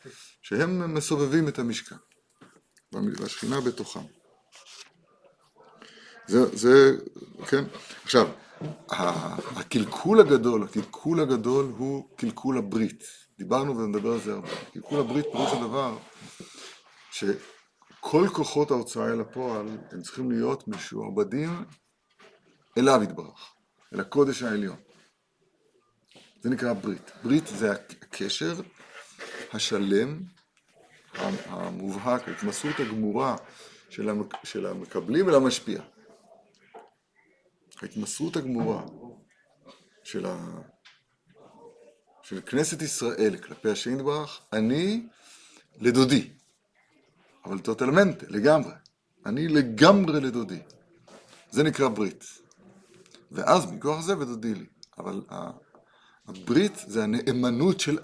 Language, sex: Hebrew, male